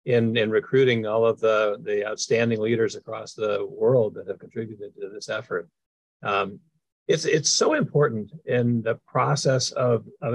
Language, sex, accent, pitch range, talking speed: English, male, American, 120-145 Hz, 160 wpm